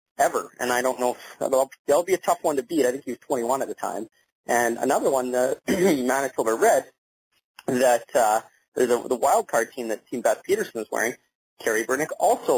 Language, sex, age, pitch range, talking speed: English, male, 30-49, 115-145 Hz, 210 wpm